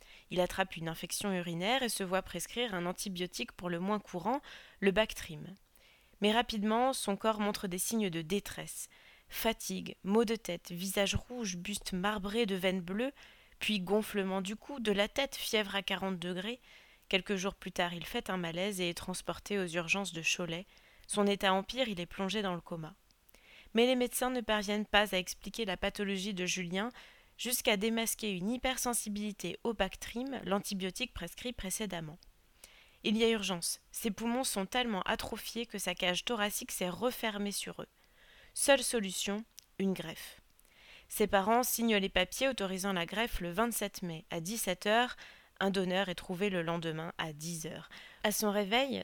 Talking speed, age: 170 wpm, 20-39